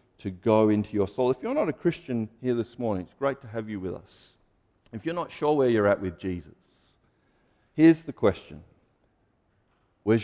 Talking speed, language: 195 wpm, English